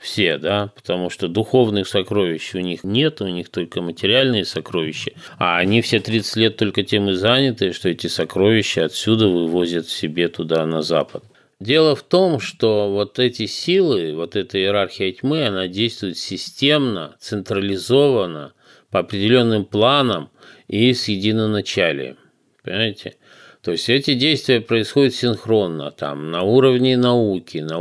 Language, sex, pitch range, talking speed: Russian, male, 90-120 Hz, 140 wpm